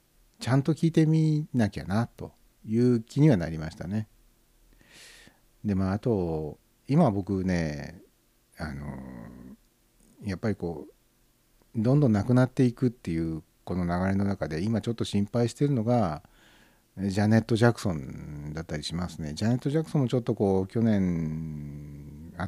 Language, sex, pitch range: Japanese, male, 80-115 Hz